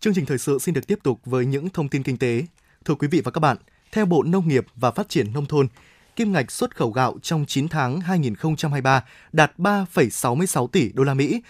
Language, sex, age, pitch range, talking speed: Vietnamese, male, 20-39, 140-185 Hz, 230 wpm